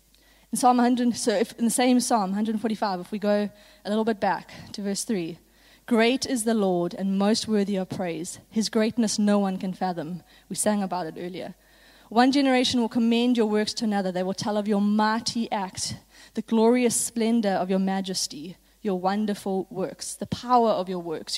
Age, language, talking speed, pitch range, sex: 20-39, English, 180 wpm, 190-230 Hz, female